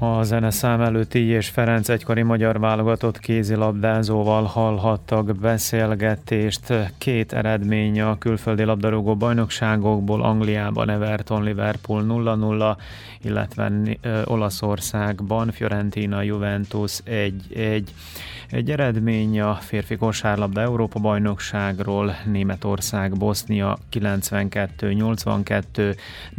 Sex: male